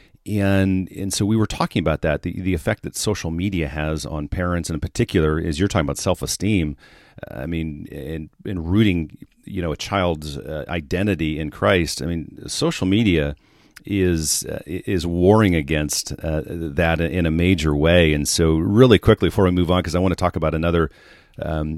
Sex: male